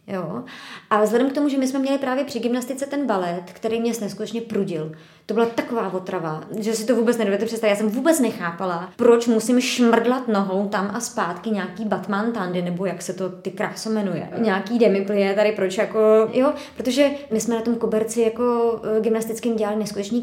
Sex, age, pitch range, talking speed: male, 20-39, 210-255 Hz, 195 wpm